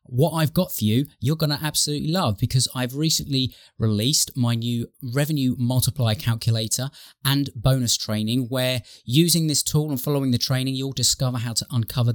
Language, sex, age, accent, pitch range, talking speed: English, male, 20-39, British, 110-145 Hz, 175 wpm